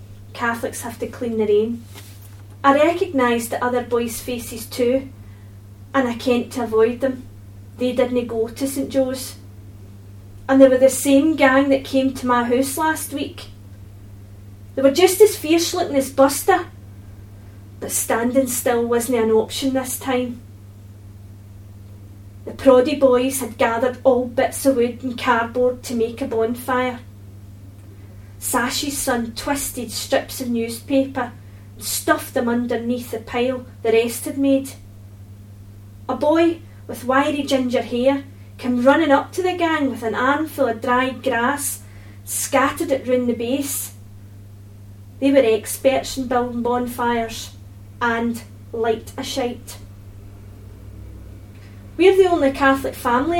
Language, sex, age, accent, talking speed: English, female, 30-49, British, 135 wpm